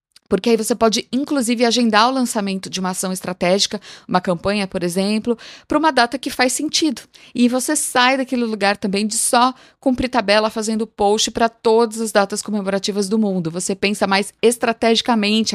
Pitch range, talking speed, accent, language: 200-255 Hz, 175 wpm, Brazilian, Portuguese